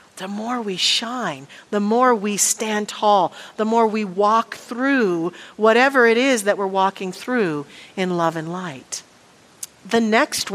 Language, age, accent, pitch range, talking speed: English, 50-69, American, 190-240 Hz, 155 wpm